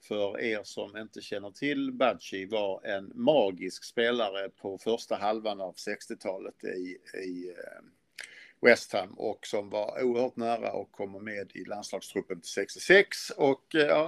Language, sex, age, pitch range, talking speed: Swedish, male, 50-69, 105-135 Hz, 145 wpm